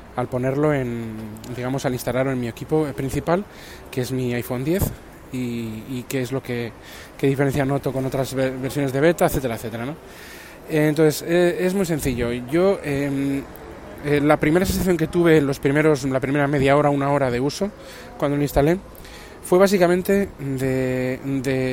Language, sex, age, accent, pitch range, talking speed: Spanish, male, 20-39, Spanish, 130-160 Hz, 170 wpm